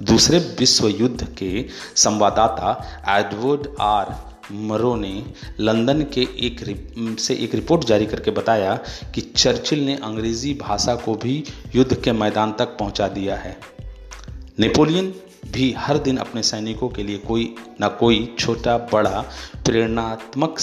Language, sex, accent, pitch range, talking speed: Hindi, male, native, 105-125 Hz, 135 wpm